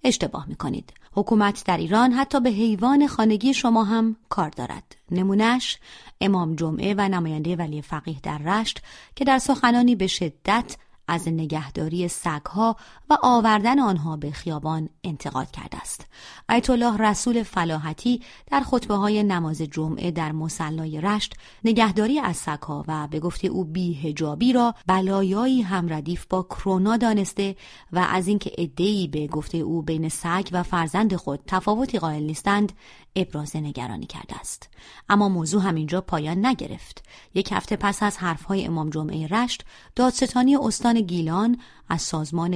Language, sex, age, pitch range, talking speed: Persian, female, 30-49, 165-225 Hz, 145 wpm